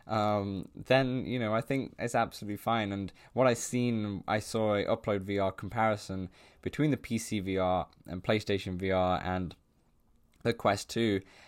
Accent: British